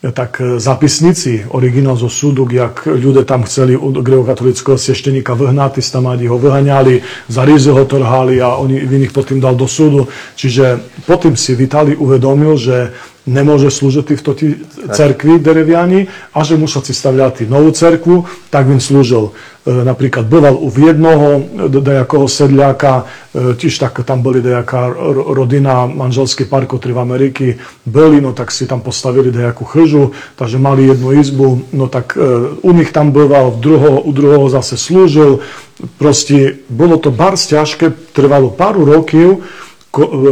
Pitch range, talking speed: 130-150 Hz, 145 wpm